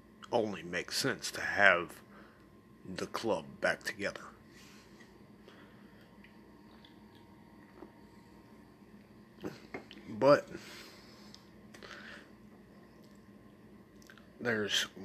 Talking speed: 45 wpm